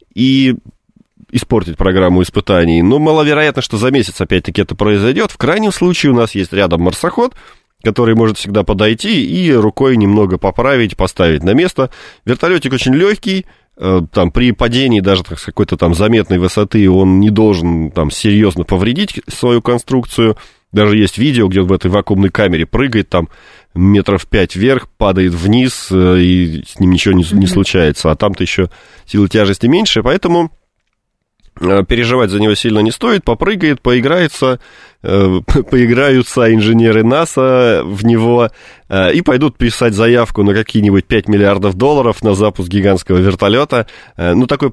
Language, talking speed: Russian, 150 wpm